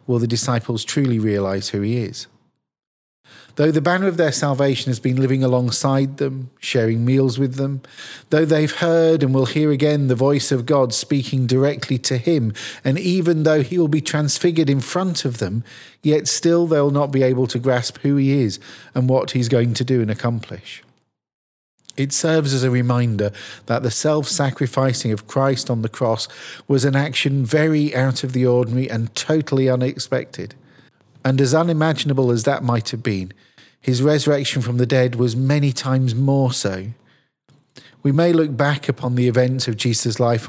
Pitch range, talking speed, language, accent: 125-150 Hz, 180 wpm, English, British